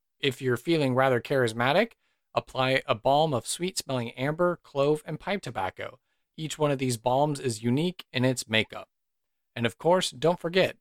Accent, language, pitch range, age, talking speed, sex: American, English, 125-155 Hz, 40-59, 165 wpm, male